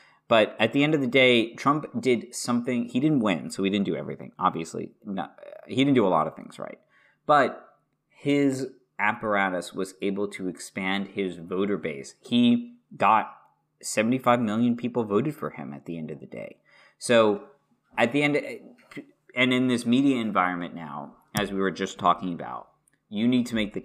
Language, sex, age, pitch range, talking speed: English, male, 30-49, 95-125 Hz, 180 wpm